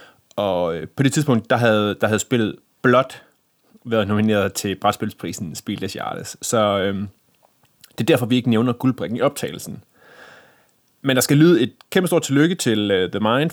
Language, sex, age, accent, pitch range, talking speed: Danish, male, 30-49, native, 105-140 Hz, 175 wpm